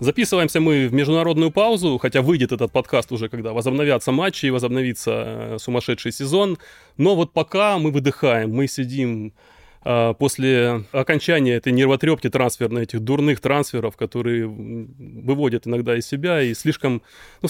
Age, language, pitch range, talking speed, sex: 20-39, Russian, 120-155 Hz, 135 wpm, male